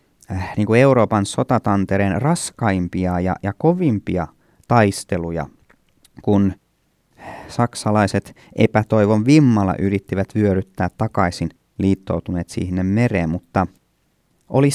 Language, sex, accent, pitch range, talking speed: Finnish, male, native, 90-115 Hz, 80 wpm